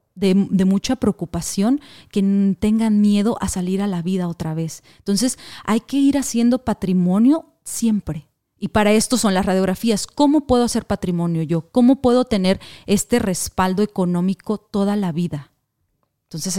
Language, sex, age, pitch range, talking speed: Spanish, female, 30-49, 185-235 Hz, 150 wpm